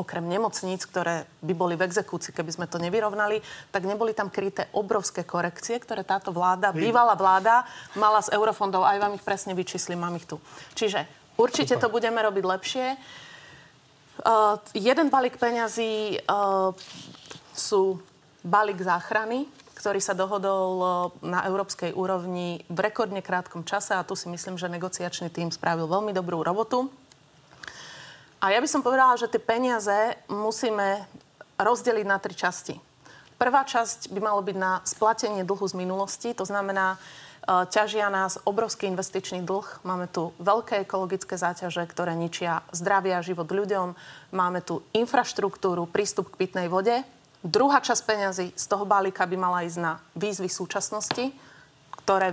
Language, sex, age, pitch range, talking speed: Slovak, female, 30-49, 180-215 Hz, 145 wpm